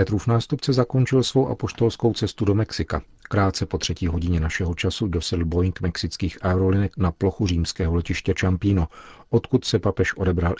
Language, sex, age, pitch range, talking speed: Czech, male, 40-59, 85-100 Hz, 155 wpm